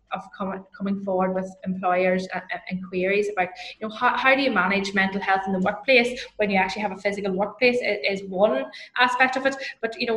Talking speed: 205 wpm